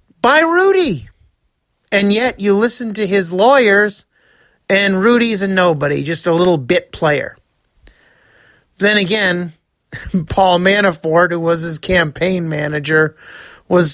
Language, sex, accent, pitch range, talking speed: English, male, American, 150-195 Hz, 120 wpm